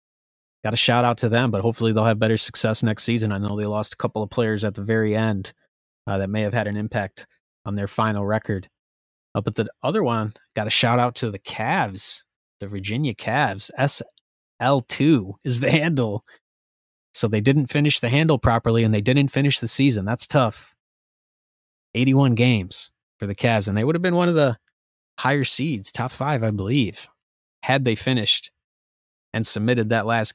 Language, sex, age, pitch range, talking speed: English, male, 20-39, 105-125 Hz, 190 wpm